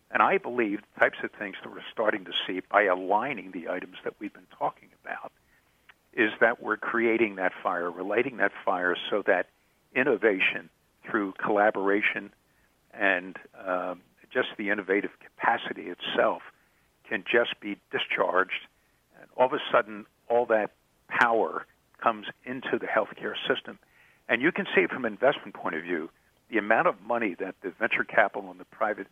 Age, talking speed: 60-79, 165 wpm